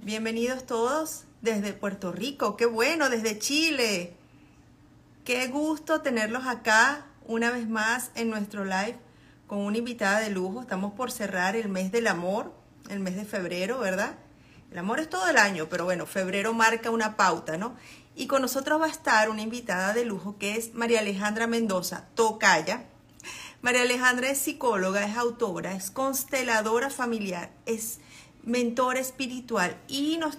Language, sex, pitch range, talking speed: Spanish, female, 210-270 Hz, 155 wpm